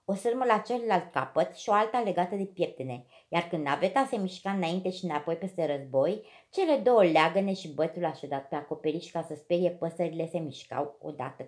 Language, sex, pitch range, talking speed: Romanian, female, 155-210 Hz, 190 wpm